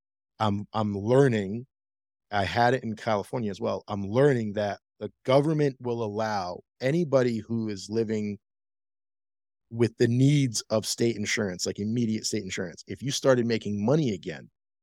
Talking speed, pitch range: 150 wpm, 100-125 Hz